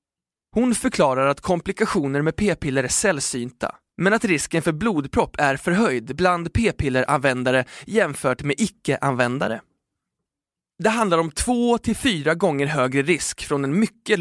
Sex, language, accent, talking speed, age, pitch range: male, Swedish, native, 135 wpm, 20-39, 135-190 Hz